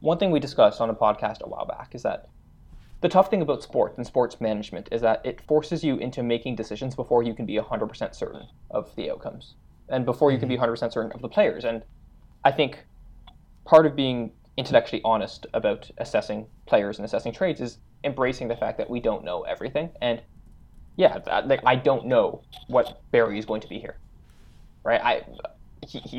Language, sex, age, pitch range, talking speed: English, male, 20-39, 110-145 Hz, 195 wpm